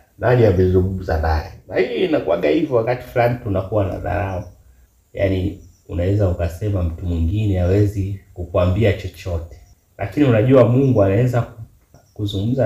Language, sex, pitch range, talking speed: Swahili, male, 85-115 Hz, 120 wpm